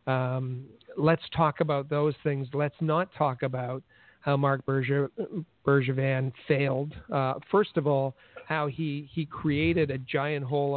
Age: 50-69